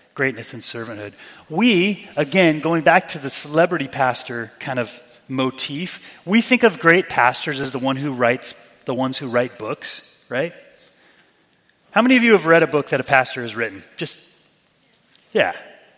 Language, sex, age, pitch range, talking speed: English, male, 30-49, 130-170 Hz, 170 wpm